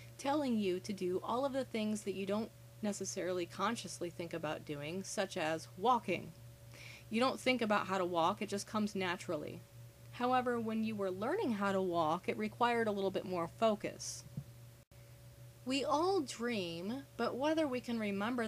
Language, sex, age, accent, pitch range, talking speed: English, female, 30-49, American, 165-225 Hz, 170 wpm